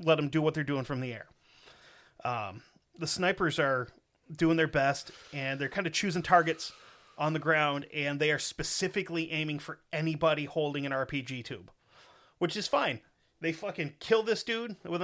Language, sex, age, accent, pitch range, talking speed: English, male, 30-49, American, 140-180 Hz, 180 wpm